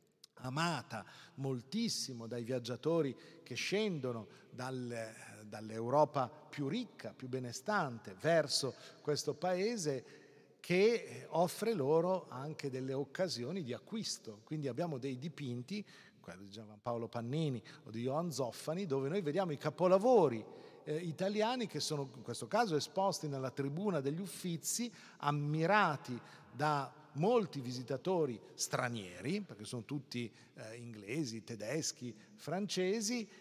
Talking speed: 120 wpm